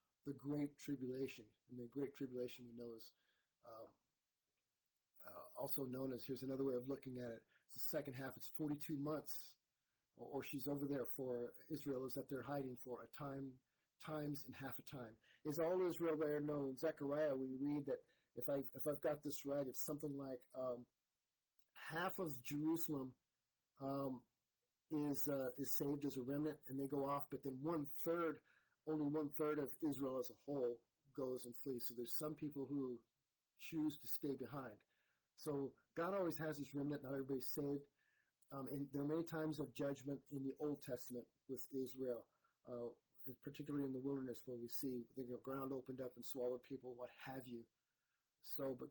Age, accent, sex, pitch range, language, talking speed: 40-59, American, male, 125-145 Hz, English, 185 wpm